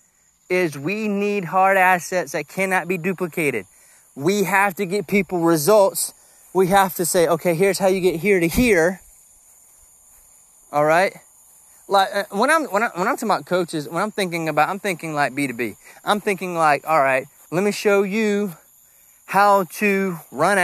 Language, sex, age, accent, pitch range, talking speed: English, male, 30-49, American, 170-205 Hz, 175 wpm